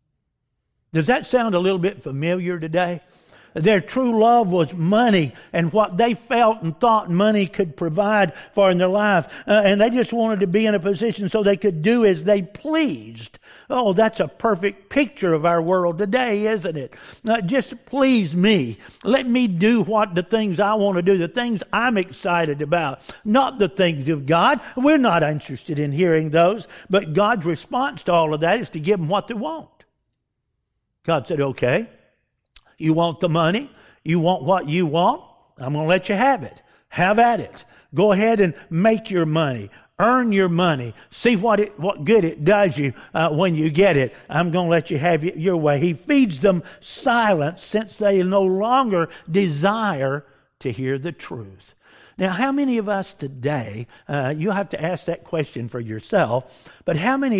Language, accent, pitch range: English, American, 165-220 Hz